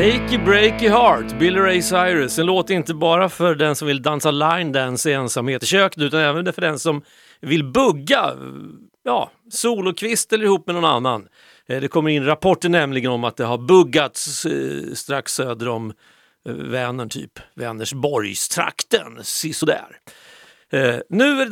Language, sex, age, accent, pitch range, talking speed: Swedish, male, 40-59, native, 125-180 Hz, 165 wpm